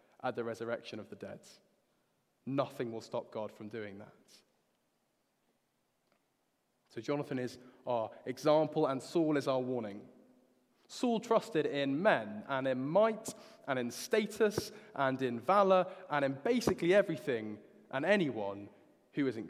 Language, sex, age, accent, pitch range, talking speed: English, male, 20-39, British, 120-155 Hz, 135 wpm